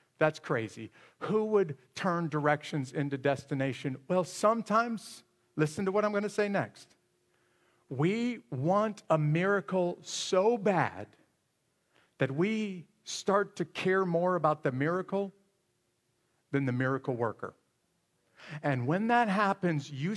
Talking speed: 125 wpm